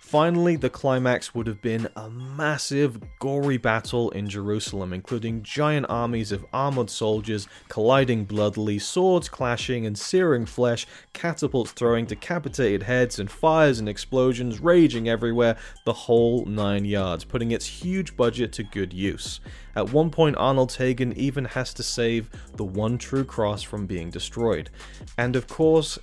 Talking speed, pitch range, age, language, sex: 150 wpm, 105-140 Hz, 20-39, English, male